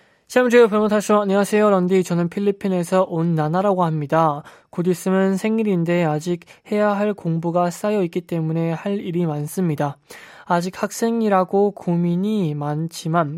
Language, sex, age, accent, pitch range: Korean, male, 20-39, native, 155-190 Hz